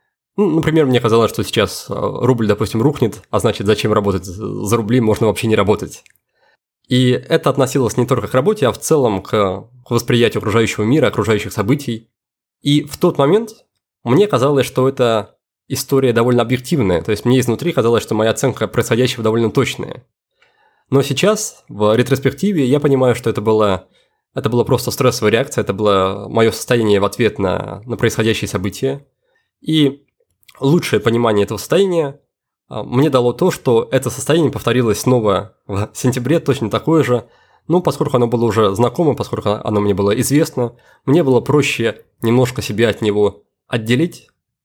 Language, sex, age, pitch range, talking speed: Russian, male, 20-39, 110-135 Hz, 160 wpm